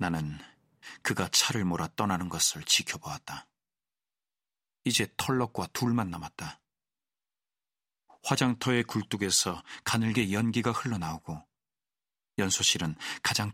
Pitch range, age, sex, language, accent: 90-120 Hz, 40-59, male, Korean, native